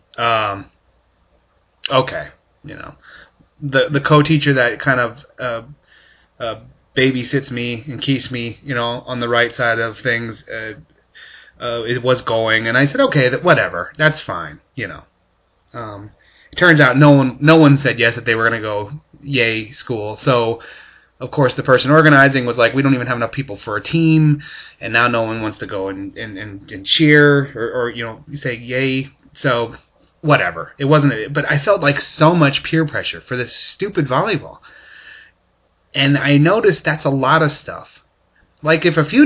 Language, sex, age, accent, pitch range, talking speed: English, male, 30-49, American, 120-155 Hz, 185 wpm